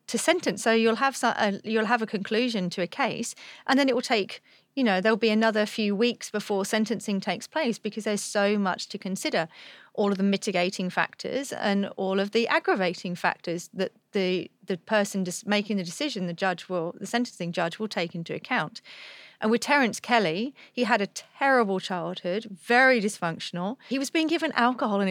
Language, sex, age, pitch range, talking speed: English, female, 40-59, 190-230 Hz, 190 wpm